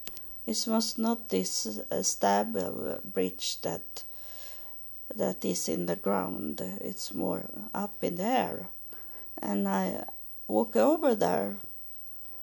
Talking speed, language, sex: 120 wpm, English, female